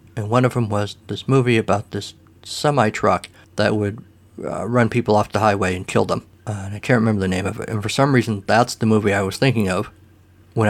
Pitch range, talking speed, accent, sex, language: 105-130 Hz, 230 wpm, American, male, English